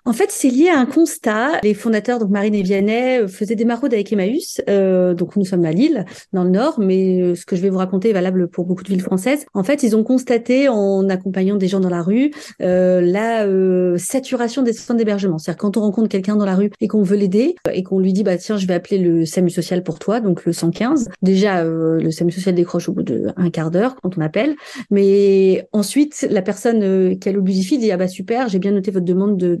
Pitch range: 185-240 Hz